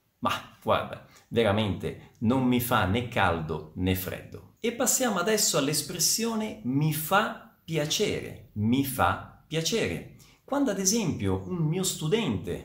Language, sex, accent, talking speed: Italian, male, native, 125 wpm